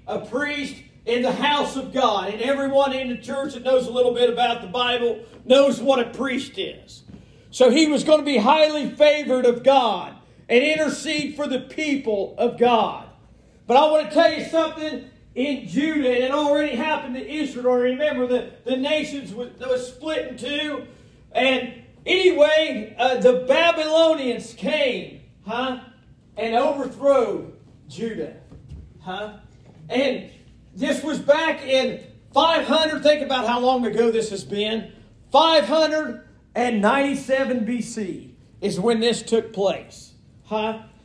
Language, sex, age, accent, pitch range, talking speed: English, male, 40-59, American, 245-305 Hz, 145 wpm